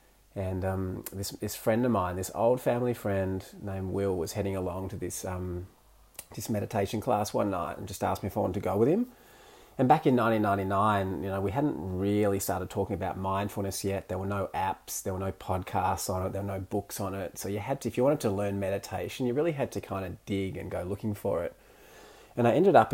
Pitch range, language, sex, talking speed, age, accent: 95-105 Hz, English, male, 240 wpm, 30-49, Australian